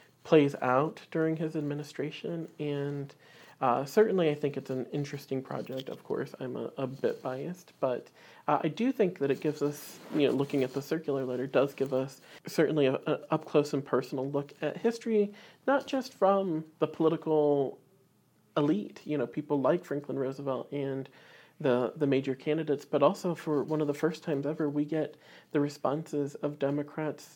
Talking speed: 180 wpm